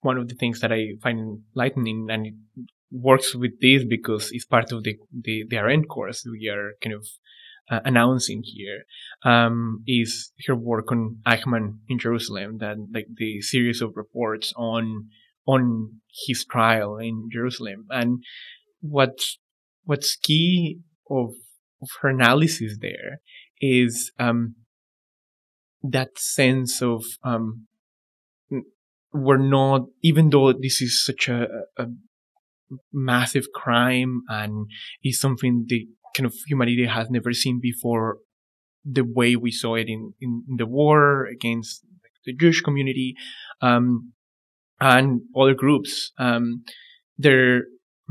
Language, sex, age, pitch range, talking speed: English, male, 20-39, 115-130 Hz, 130 wpm